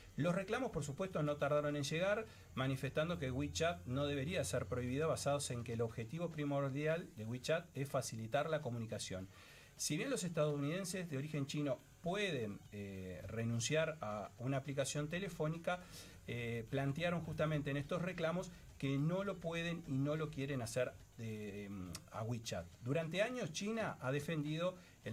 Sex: male